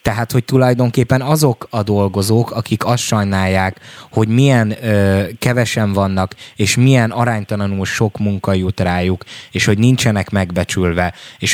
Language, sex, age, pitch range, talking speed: Hungarian, male, 20-39, 95-115 Hz, 130 wpm